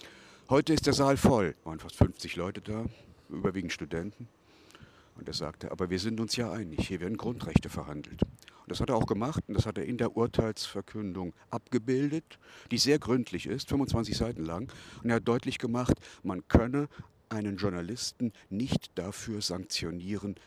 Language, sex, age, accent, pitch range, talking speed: German, male, 50-69, German, 90-115 Hz, 175 wpm